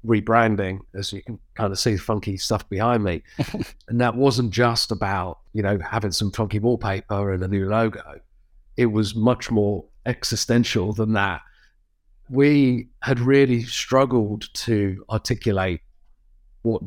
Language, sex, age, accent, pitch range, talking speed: English, male, 40-59, British, 100-120 Hz, 145 wpm